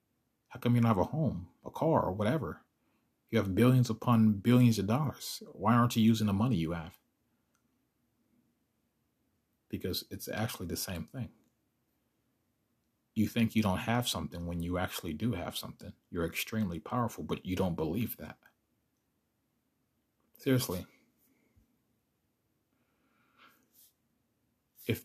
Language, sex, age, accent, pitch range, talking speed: English, male, 30-49, American, 90-115 Hz, 130 wpm